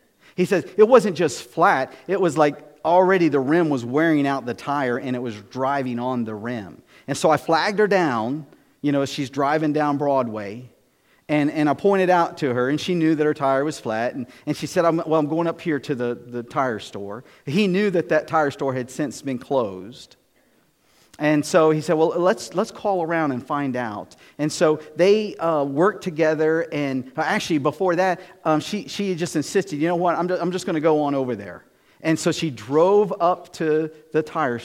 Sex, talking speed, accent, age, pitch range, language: male, 215 wpm, American, 40-59, 140-180 Hz, English